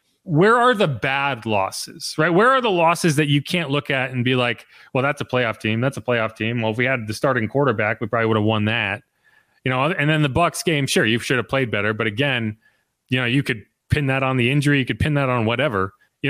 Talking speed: 260 wpm